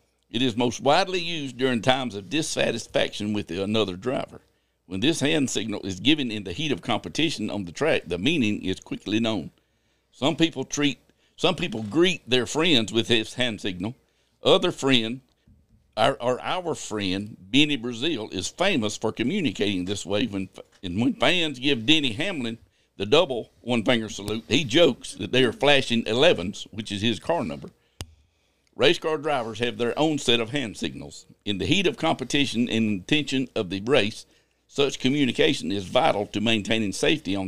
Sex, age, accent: male, 60-79, American